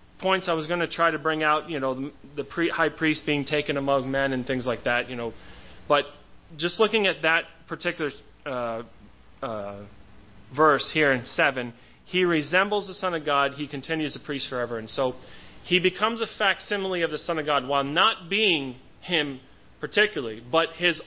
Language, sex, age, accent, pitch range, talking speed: English, male, 30-49, American, 115-160 Hz, 190 wpm